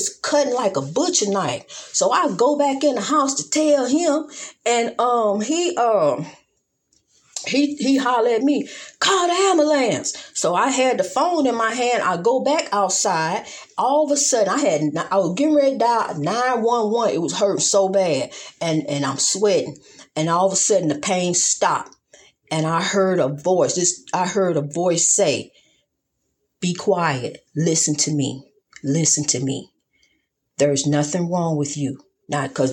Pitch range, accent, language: 165-245 Hz, American, English